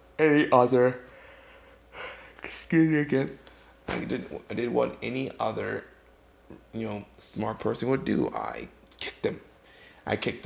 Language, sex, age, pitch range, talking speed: English, male, 20-39, 100-135 Hz, 140 wpm